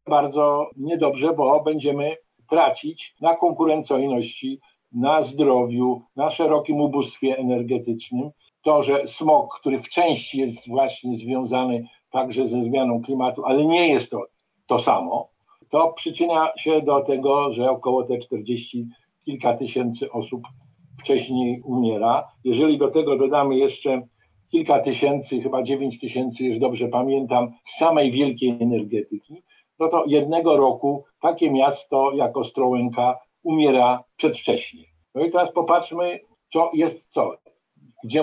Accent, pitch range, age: native, 125-155 Hz, 50-69